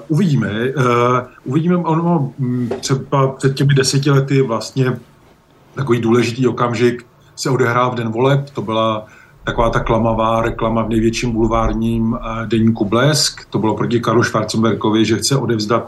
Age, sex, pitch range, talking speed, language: 40-59, male, 120-140 Hz, 130 wpm, Slovak